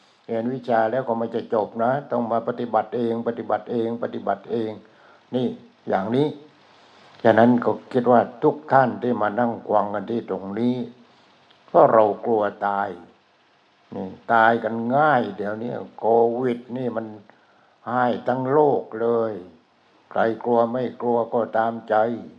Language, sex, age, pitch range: English, male, 60-79, 110-120 Hz